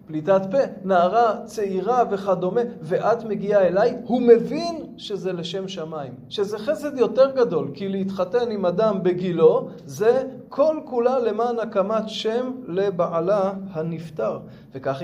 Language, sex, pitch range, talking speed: Hebrew, male, 165-230 Hz, 125 wpm